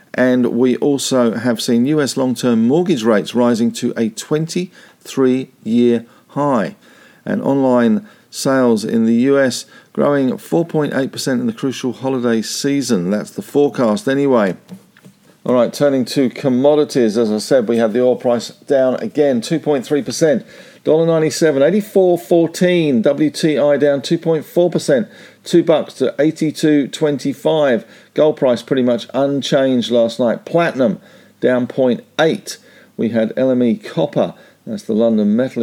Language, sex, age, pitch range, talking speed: English, male, 50-69, 120-160 Hz, 125 wpm